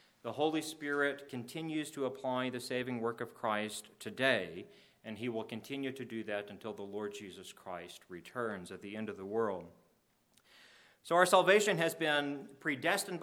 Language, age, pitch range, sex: English, 40-59, 115-145 Hz, male